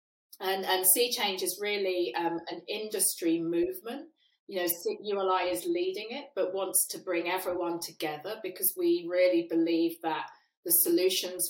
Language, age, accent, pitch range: English, 30-49, British, 165-210 Hz